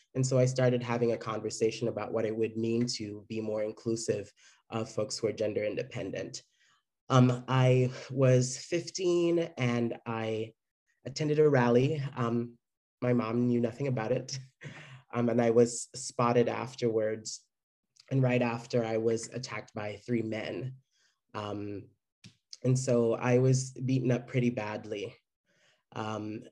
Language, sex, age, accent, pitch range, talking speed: English, male, 20-39, American, 110-125 Hz, 145 wpm